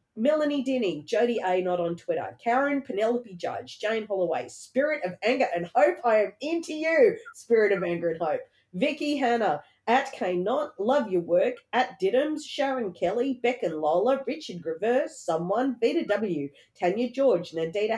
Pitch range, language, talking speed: 195-280 Hz, English, 165 wpm